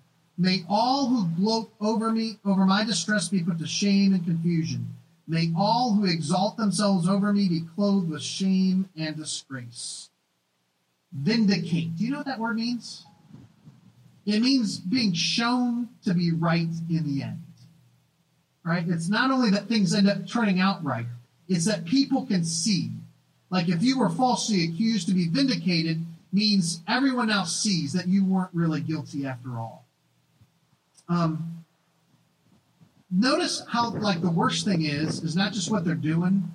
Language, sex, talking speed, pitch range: English, male, 160 wpm, 160-200 Hz